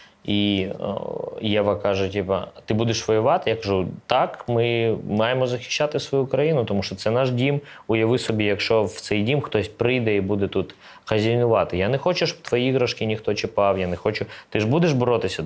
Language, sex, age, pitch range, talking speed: Ukrainian, male, 20-39, 100-125 Hz, 180 wpm